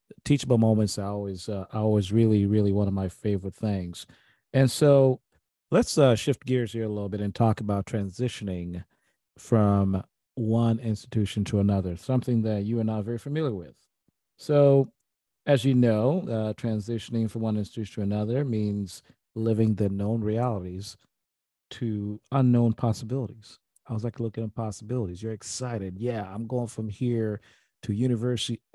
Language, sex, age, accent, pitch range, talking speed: English, male, 40-59, American, 105-125 Hz, 155 wpm